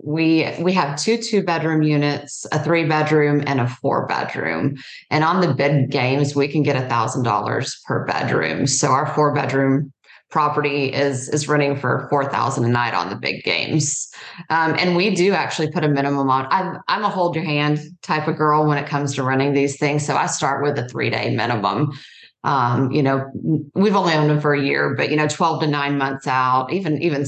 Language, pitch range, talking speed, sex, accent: English, 135-155 Hz, 190 wpm, female, American